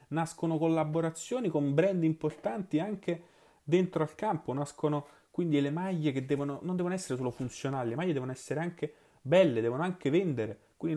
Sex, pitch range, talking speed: male, 130-160 Hz, 165 wpm